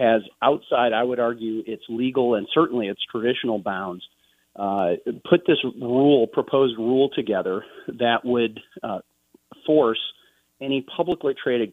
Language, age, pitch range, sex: English, 40-59, 105-125 Hz, male